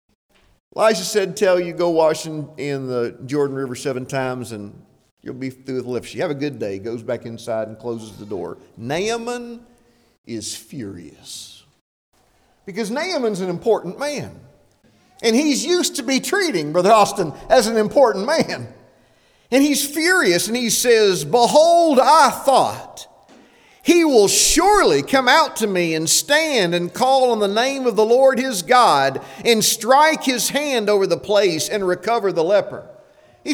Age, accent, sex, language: 50-69, American, male, English